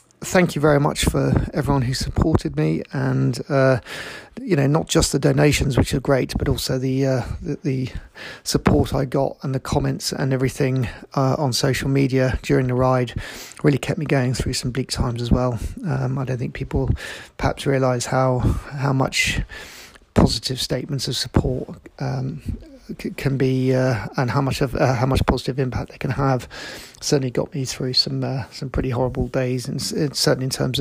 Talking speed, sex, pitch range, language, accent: 185 wpm, male, 130-150 Hz, English, British